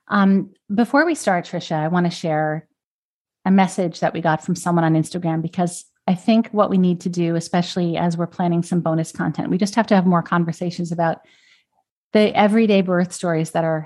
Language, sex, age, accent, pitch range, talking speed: English, female, 40-59, American, 170-210 Hz, 205 wpm